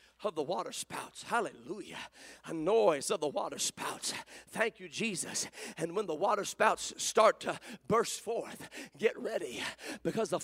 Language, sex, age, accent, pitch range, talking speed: English, male, 40-59, American, 235-385 Hz, 155 wpm